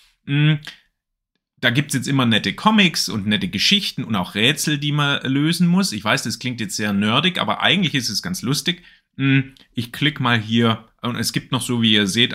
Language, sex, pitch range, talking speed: German, male, 110-155 Hz, 205 wpm